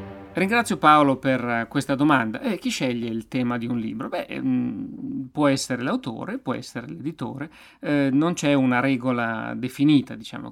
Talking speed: 155 wpm